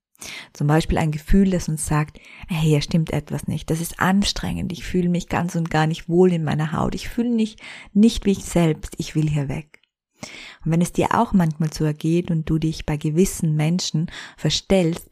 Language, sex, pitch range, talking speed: German, female, 155-180 Hz, 205 wpm